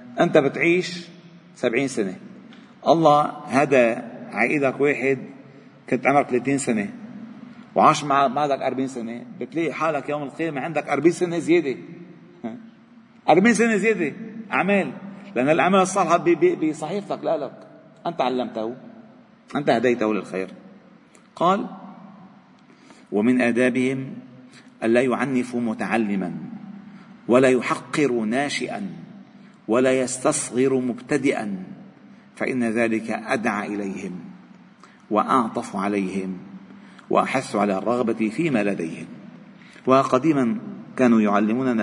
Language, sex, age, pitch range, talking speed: Arabic, male, 40-59, 120-200 Hz, 95 wpm